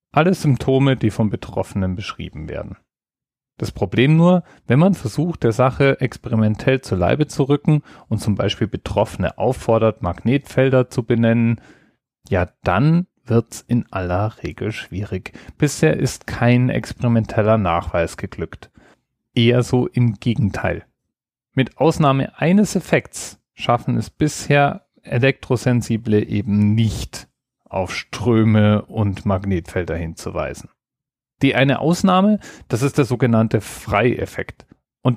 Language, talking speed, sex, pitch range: German, 120 wpm, male, 105-135 Hz